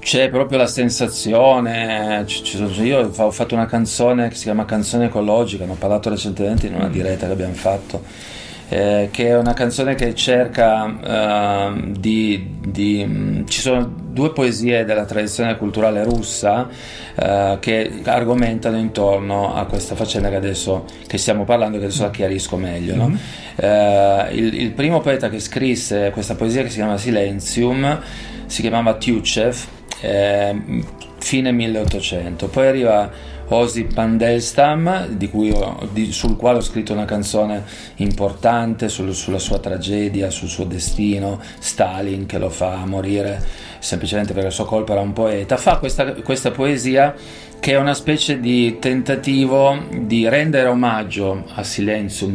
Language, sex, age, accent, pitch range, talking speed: Italian, male, 30-49, native, 100-120 Hz, 150 wpm